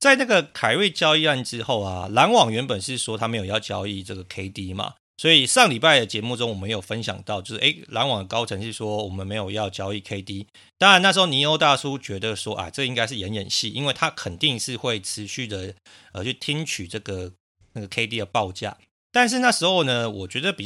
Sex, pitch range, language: male, 100-140 Hz, Chinese